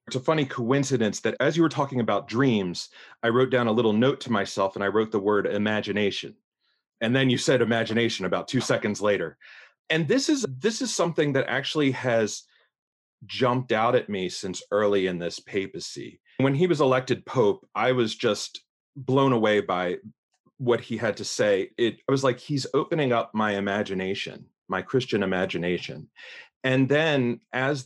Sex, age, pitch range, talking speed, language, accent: male, 30-49, 110-150 Hz, 180 wpm, English, American